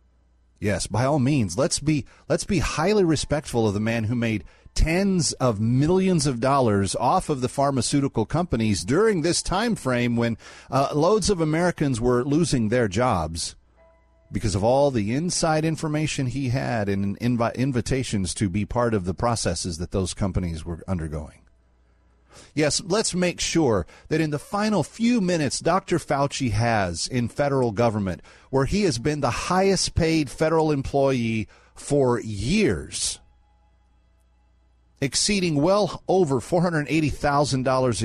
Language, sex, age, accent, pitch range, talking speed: English, male, 40-59, American, 105-165 Hz, 140 wpm